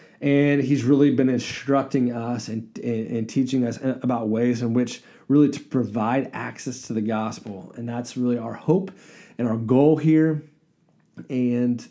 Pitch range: 110-135 Hz